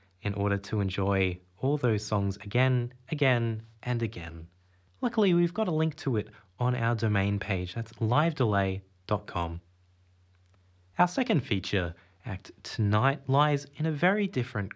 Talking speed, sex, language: 140 wpm, male, English